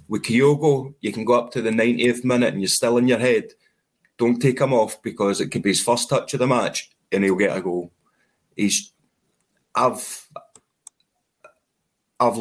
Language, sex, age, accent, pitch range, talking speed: English, male, 30-49, British, 105-135 Hz, 185 wpm